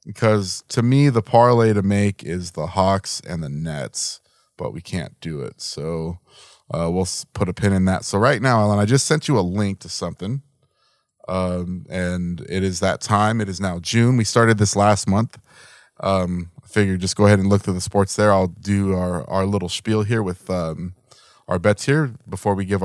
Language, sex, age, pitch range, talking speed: English, male, 20-39, 95-115 Hz, 210 wpm